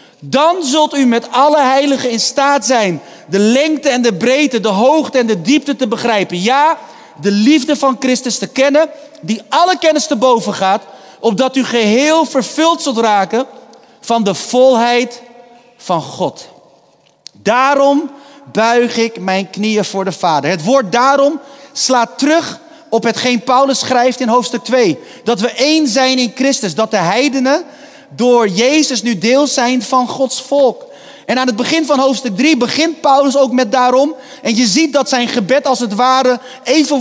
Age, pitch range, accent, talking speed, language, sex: 40-59, 230-275 Hz, Dutch, 170 wpm, Dutch, male